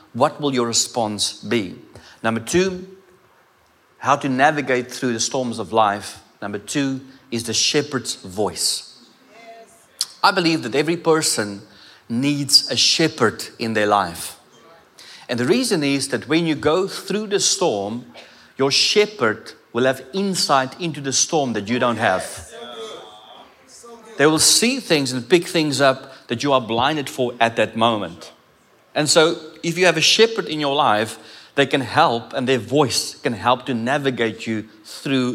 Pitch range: 115-160 Hz